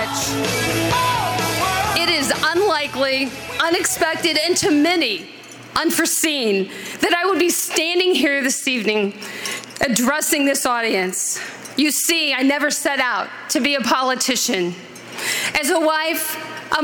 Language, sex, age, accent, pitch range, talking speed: English, female, 40-59, American, 265-330 Hz, 120 wpm